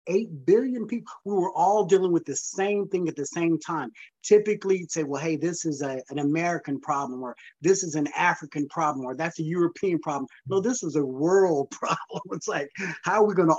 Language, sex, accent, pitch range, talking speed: English, male, American, 160-210 Hz, 215 wpm